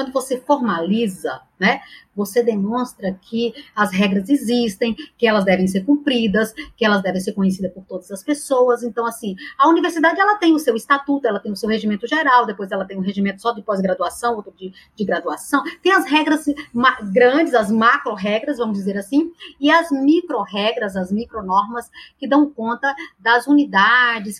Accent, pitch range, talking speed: Brazilian, 210-280 Hz, 175 wpm